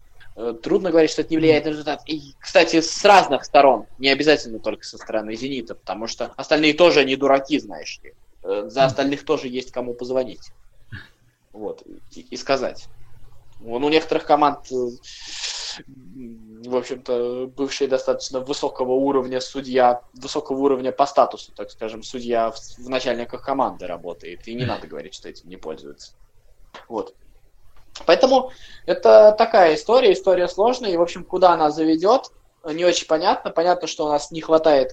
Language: Russian